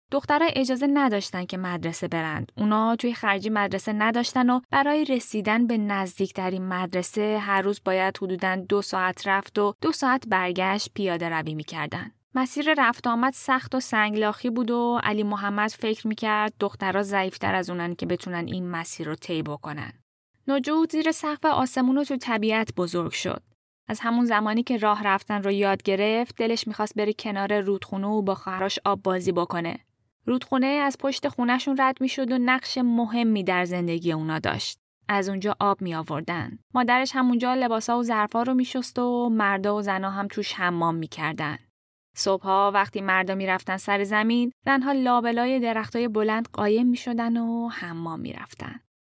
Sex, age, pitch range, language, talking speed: female, 10-29, 195-250 Hz, Persian, 160 wpm